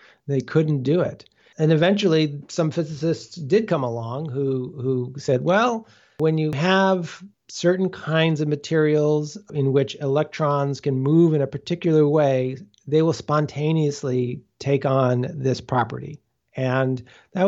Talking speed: 135 wpm